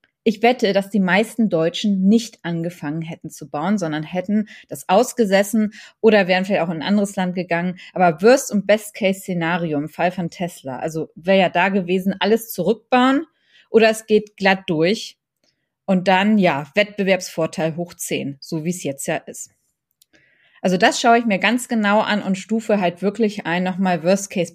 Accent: German